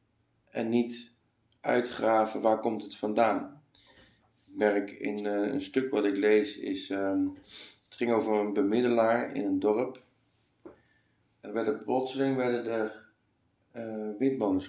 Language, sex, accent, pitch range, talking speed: Dutch, male, Dutch, 105-140 Hz, 135 wpm